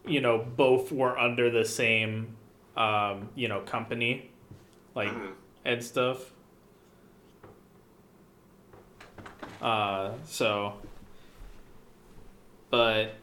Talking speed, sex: 75 wpm, male